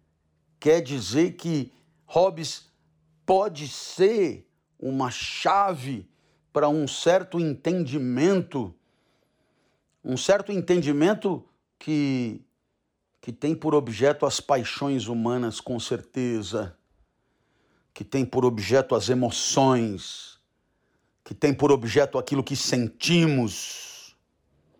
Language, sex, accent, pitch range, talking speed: Portuguese, male, Brazilian, 125-170 Hz, 90 wpm